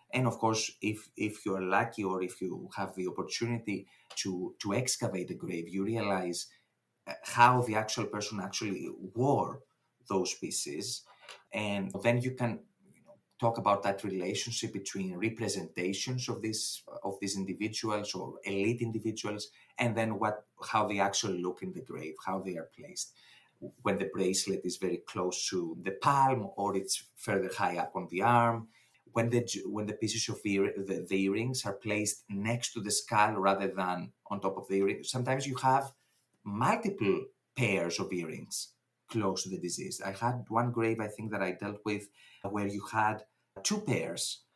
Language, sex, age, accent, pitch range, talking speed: English, male, 30-49, Spanish, 100-125 Hz, 170 wpm